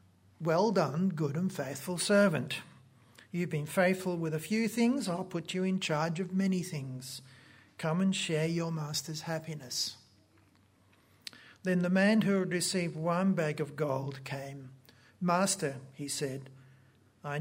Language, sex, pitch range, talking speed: English, male, 135-185 Hz, 145 wpm